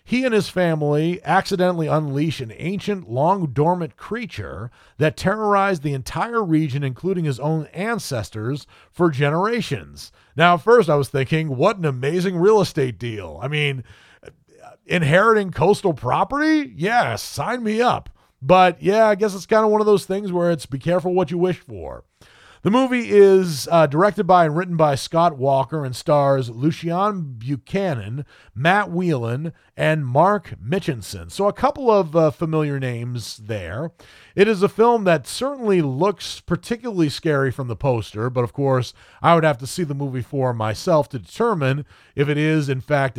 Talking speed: 165 wpm